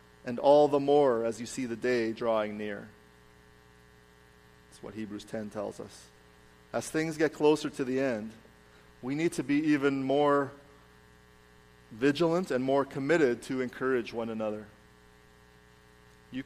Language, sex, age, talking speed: English, male, 40-59, 140 wpm